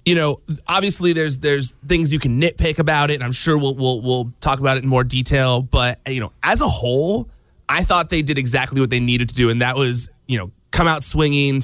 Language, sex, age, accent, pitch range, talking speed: English, male, 30-49, American, 125-150 Hz, 240 wpm